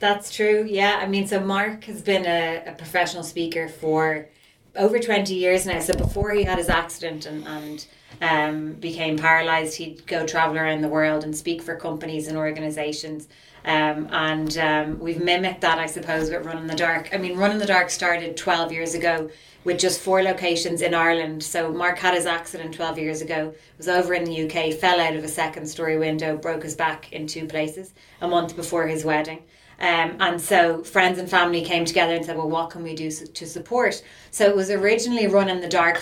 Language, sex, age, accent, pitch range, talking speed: English, female, 30-49, Irish, 160-185 Hz, 210 wpm